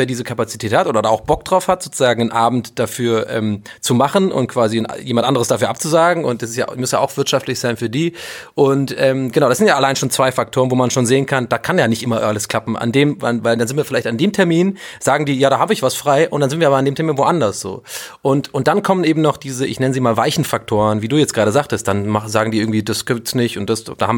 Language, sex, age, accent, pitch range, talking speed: German, male, 30-49, German, 115-145 Hz, 285 wpm